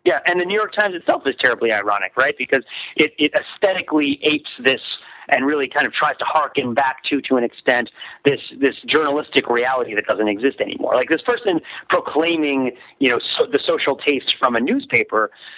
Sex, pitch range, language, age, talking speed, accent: male, 125-180 Hz, English, 40-59, 195 wpm, American